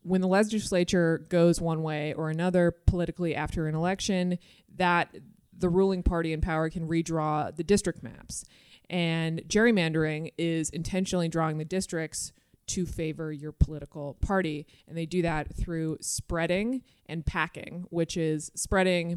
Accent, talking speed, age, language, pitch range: American, 145 wpm, 20-39, English, 155-180 Hz